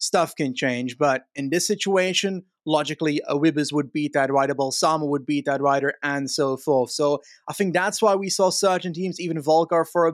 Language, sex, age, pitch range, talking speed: English, male, 20-39, 150-175 Hz, 205 wpm